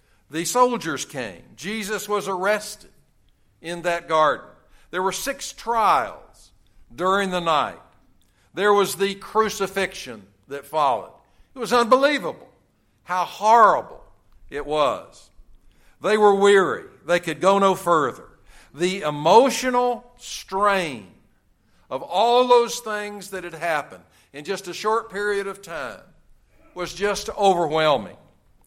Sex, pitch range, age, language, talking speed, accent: male, 150-205 Hz, 60-79, English, 120 wpm, American